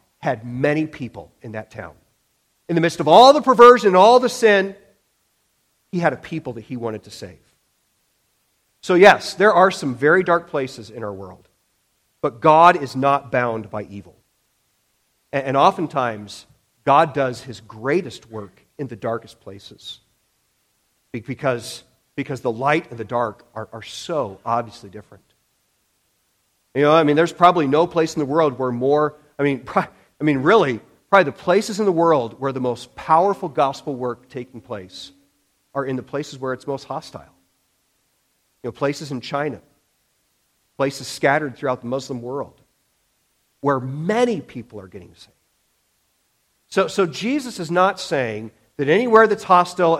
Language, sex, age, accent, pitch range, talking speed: English, male, 40-59, American, 115-160 Hz, 160 wpm